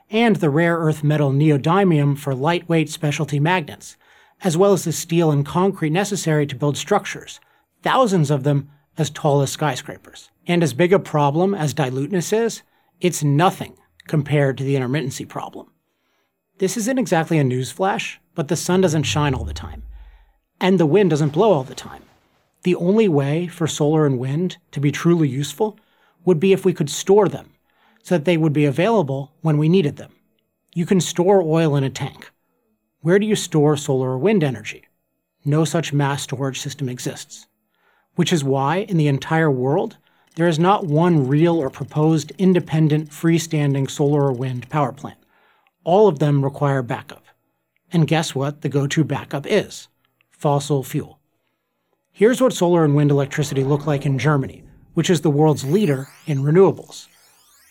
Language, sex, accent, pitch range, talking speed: English, male, American, 140-175 Hz, 170 wpm